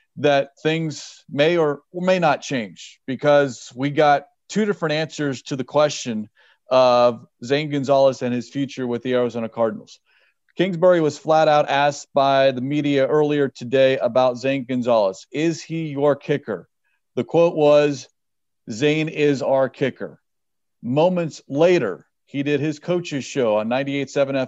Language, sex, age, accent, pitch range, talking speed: English, male, 40-59, American, 135-155 Hz, 145 wpm